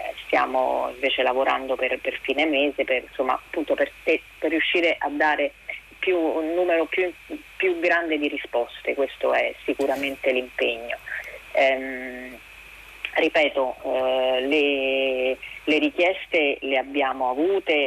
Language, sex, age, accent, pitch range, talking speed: Italian, female, 30-49, native, 135-160 Hz, 120 wpm